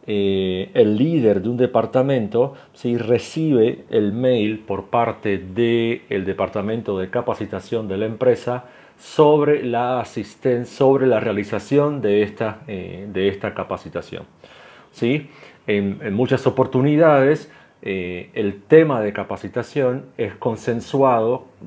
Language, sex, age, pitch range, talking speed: Spanish, male, 40-59, 105-130 Hz, 120 wpm